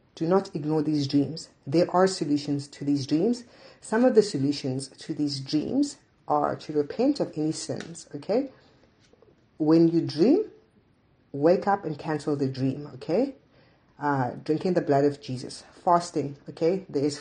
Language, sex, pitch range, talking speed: English, female, 145-190 Hz, 155 wpm